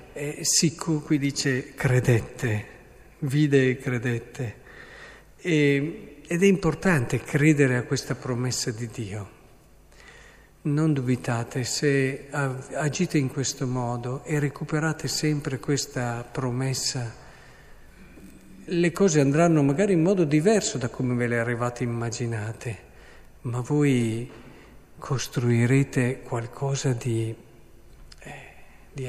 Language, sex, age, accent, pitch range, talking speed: Italian, male, 50-69, native, 125-150 Hz, 105 wpm